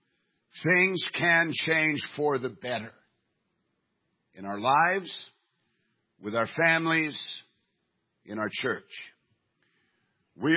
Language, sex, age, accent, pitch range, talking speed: English, male, 50-69, American, 120-160 Hz, 90 wpm